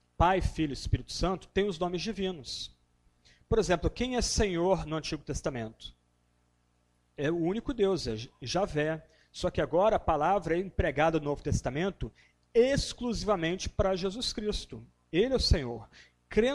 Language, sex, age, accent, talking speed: Portuguese, male, 40-59, Brazilian, 150 wpm